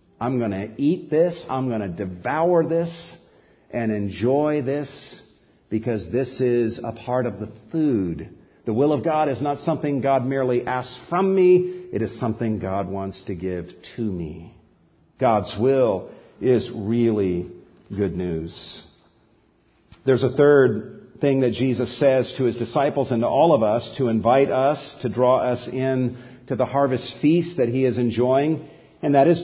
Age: 50-69